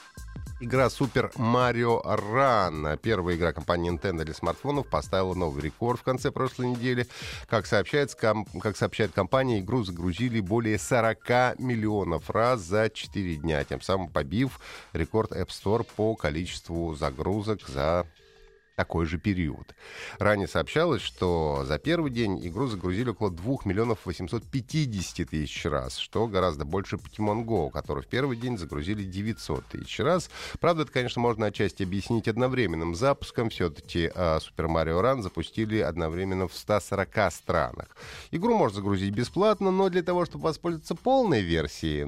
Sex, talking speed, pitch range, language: male, 140 wpm, 90-125 Hz, Russian